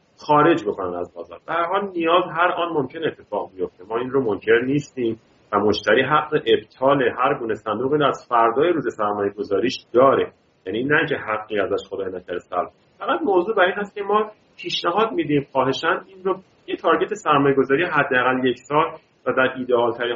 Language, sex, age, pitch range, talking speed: Persian, male, 40-59, 110-170 Hz, 175 wpm